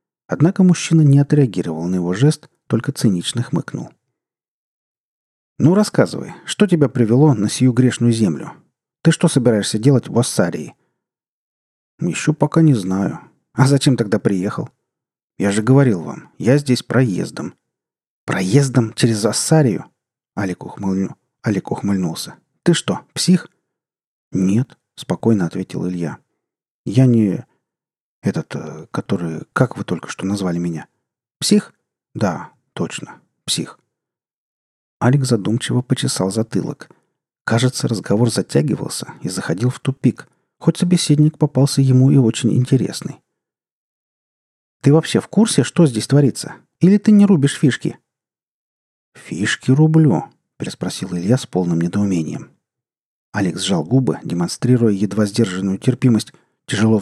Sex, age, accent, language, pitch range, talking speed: male, 40-59, native, Russian, 100-145 Hz, 120 wpm